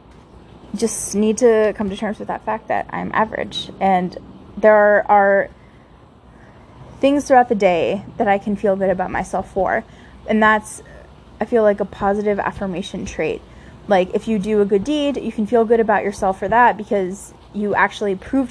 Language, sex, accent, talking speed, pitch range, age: English, female, American, 180 wpm, 195-225 Hz, 20-39